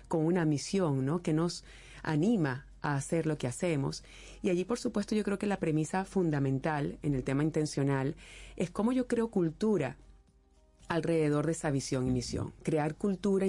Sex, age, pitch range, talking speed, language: female, 40-59, 135-175 Hz, 175 wpm, Spanish